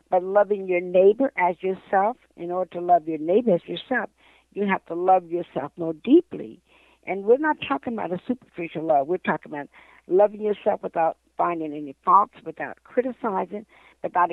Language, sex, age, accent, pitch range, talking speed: English, female, 60-79, American, 180-240 Hz, 170 wpm